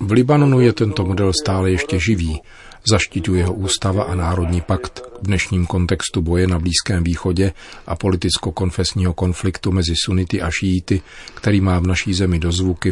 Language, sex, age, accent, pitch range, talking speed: Czech, male, 40-59, native, 85-95 Hz, 160 wpm